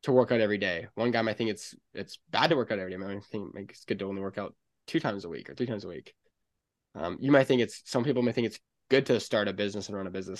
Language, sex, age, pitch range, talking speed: English, male, 10-29, 100-120 Hz, 310 wpm